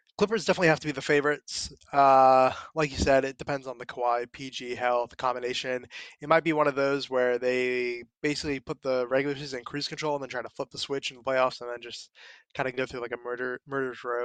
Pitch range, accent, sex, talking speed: 125-155 Hz, American, male, 240 wpm